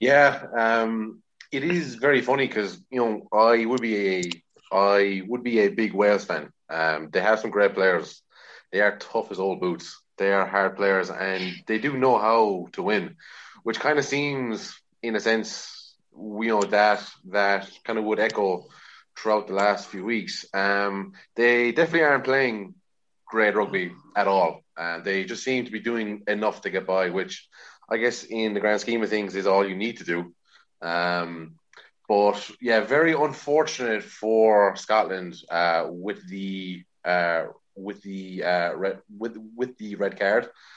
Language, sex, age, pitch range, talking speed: English, male, 30-49, 95-115 Hz, 175 wpm